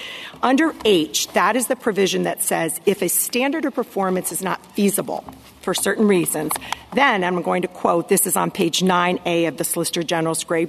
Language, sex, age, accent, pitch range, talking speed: English, female, 50-69, American, 170-220 Hz, 190 wpm